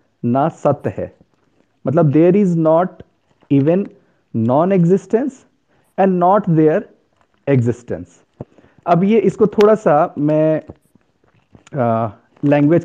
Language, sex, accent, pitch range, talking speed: Hindi, male, native, 135-175 Hz, 100 wpm